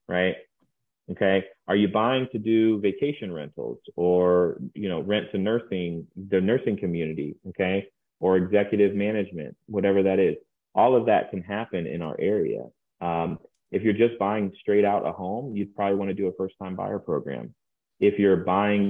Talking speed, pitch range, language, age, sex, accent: 170 wpm, 95-110 Hz, English, 30-49, male, American